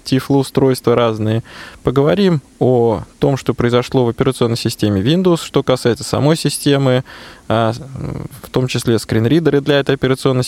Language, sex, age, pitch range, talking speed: Russian, male, 20-39, 120-150 Hz, 125 wpm